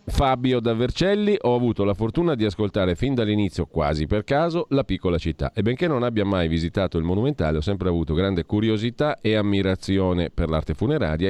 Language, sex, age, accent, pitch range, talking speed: Italian, male, 40-59, native, 80-105 Hz, 185 wpm